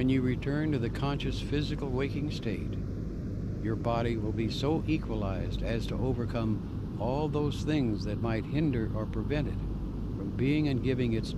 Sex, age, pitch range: male, 60-79, 100-130 Hz